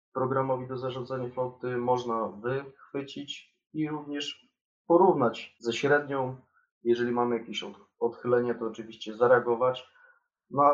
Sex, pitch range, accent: male, 115-135 Hz, native